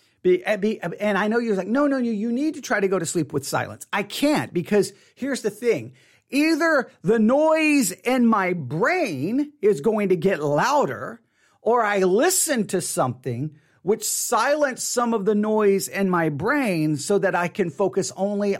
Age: 40-59